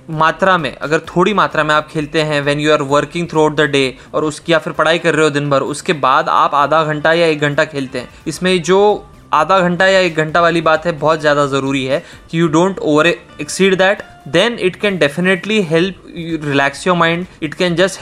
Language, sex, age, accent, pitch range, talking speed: Hindi, male, 20-39, native, 155-190 Hz, 230 wpm